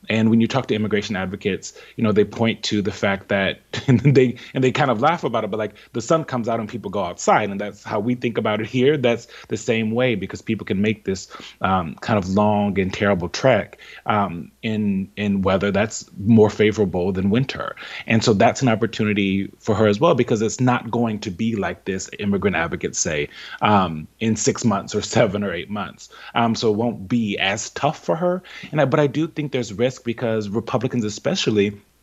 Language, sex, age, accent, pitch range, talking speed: English, male, 30-49, American, 100-120 Hz, 215 wpm